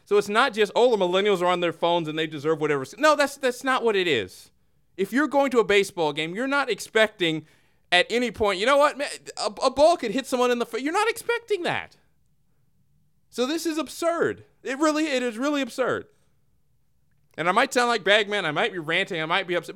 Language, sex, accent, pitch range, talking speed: English, male, American, 180-290 Hz, 230 wpm